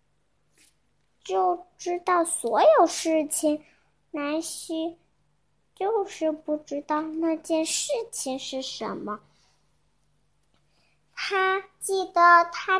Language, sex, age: Chinese, male, 10-29